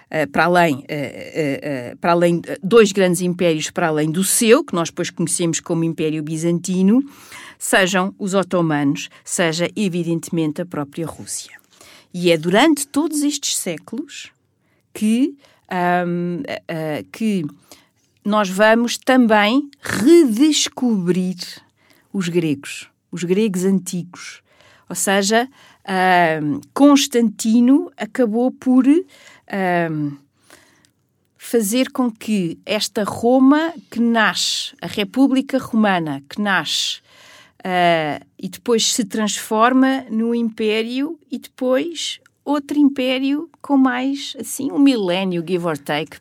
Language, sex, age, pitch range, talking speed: Portuguese, female, 50-69, 175-260 Hz, 100 wpm